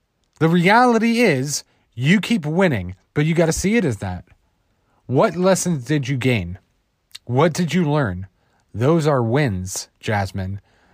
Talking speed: 150 wpm